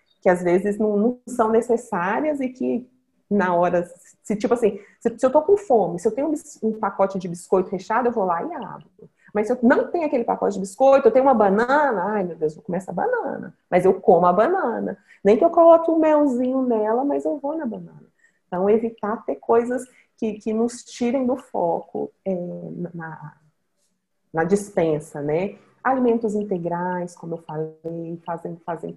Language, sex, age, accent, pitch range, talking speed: Portuguese, female, 30-49, Brazilian, 185-245 Hz, 195 wpm